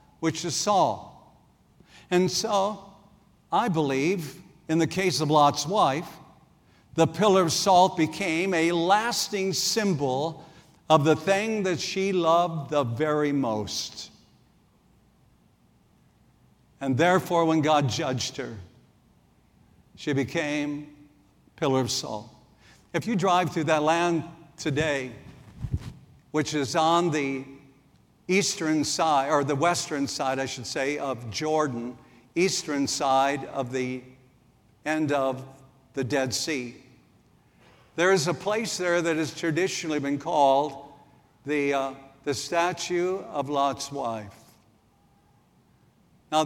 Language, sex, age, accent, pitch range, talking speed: English, male, 60-79, American, 135-170 Hz, 115 wpm